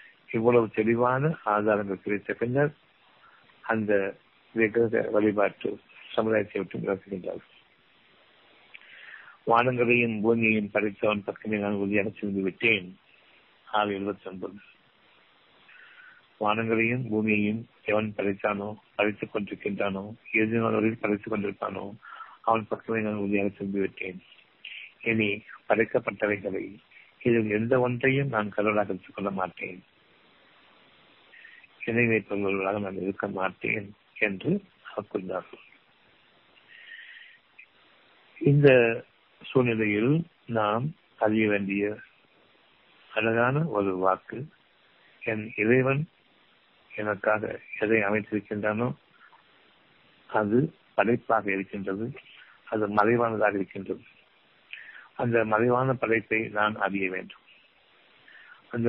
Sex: male